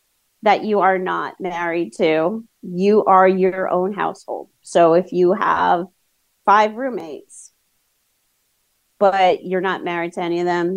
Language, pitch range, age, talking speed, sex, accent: English, 180-265 Hz, 30-49, 140 wpm, female, American